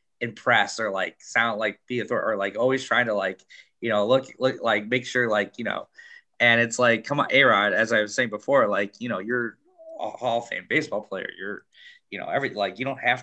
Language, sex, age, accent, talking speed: English, male, 20-39, American, 235 wpm